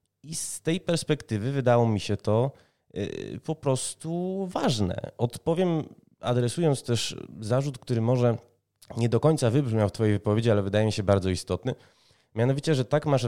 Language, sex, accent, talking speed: Polish, male, native, 155 wpm